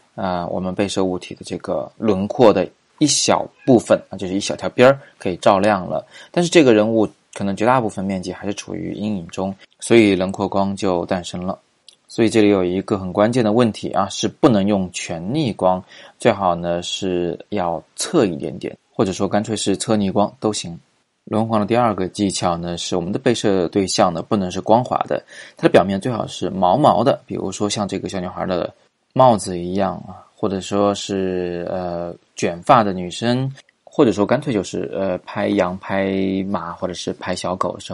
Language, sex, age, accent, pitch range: Chinese, male, 20-39, native, 90-105 Hz